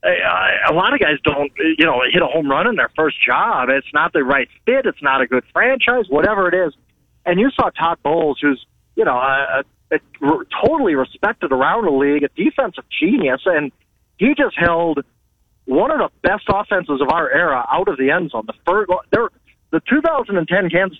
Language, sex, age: English, male, 40-59